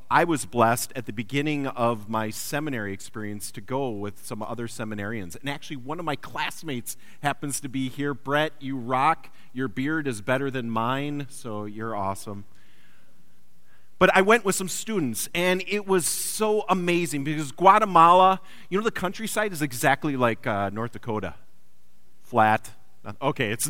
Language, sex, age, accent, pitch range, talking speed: English, male, 40-59, American, 110-165 Hz, 160 wpm